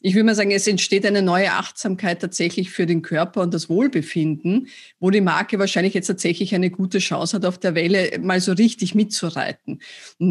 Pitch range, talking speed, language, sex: 175-205 Hz, 200 wpm, German, female